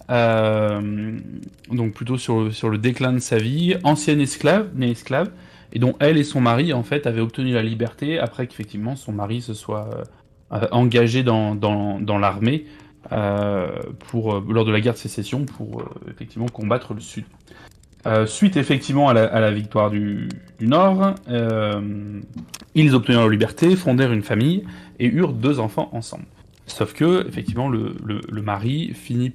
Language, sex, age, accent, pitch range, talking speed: French, male, 20-39, French, 105-125 Hz, 170 wpm